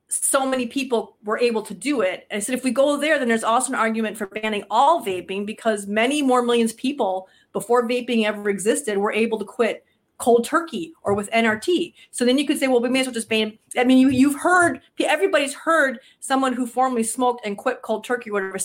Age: 30-49